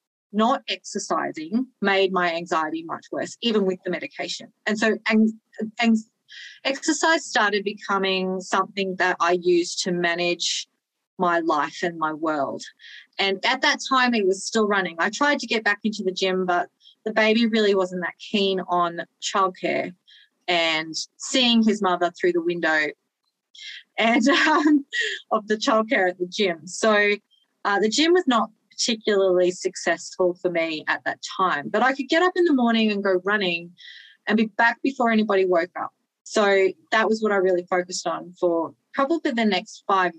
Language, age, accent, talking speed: English, 30-49, Australian, 170 wpm